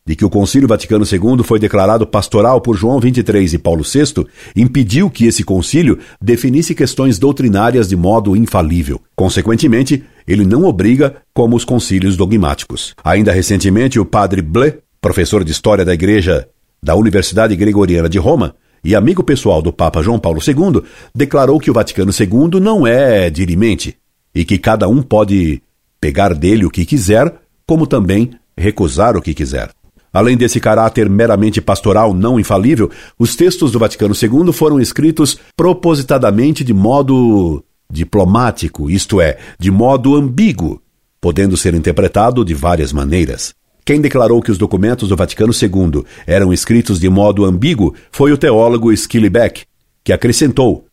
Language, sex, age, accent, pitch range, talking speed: Portuguese, male, 60-79, Brazilian, 95-120 Hz, 150 wpm